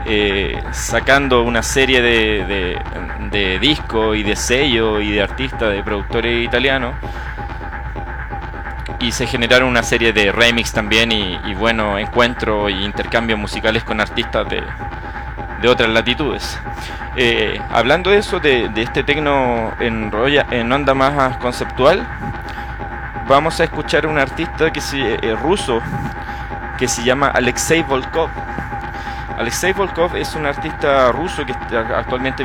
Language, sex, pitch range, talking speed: English, male, 105-135 Hz, 135 wpm